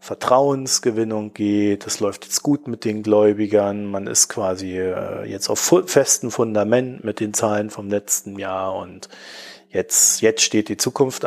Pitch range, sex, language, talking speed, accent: 100-130 Hz, male, German, 150 wpm, German